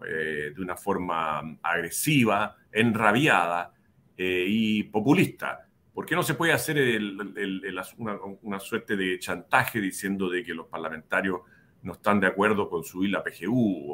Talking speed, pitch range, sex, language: 135 wpm, 90-115 Hz, male, Spanish